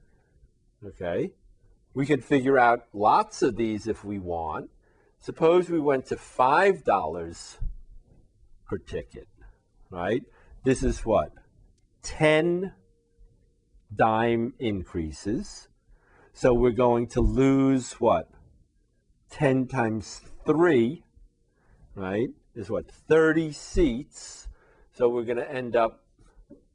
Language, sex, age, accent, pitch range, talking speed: English, male, 50-69, American, 105-135 Hz, 100 wpm